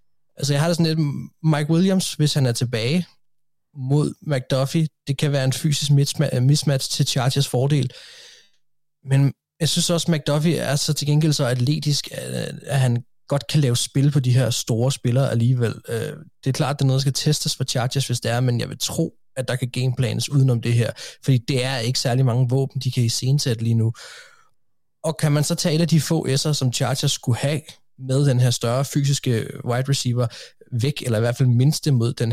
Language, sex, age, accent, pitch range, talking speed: Danish, male, 20-39, native, 125-145 Hz, 210 wpm